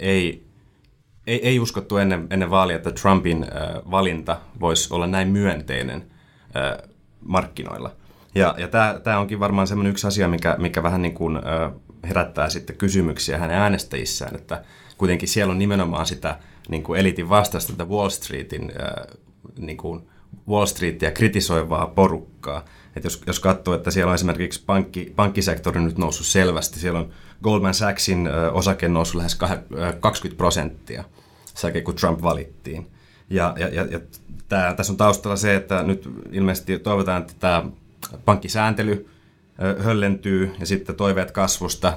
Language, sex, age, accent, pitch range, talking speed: Finnish, male, 30-49, native, 85-100 Hz, 145 wpm